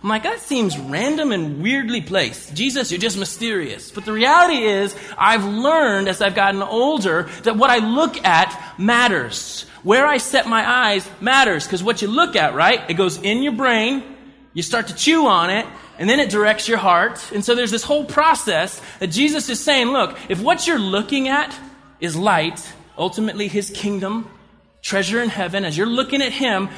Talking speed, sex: 195 wpm, male